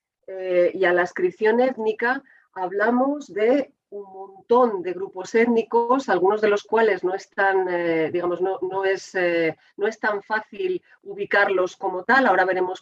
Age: 40-59